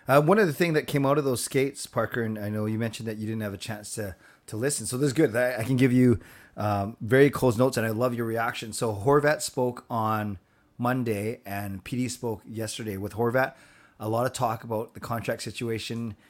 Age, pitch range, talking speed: 30-49, 105-125 Hz, 230 wpm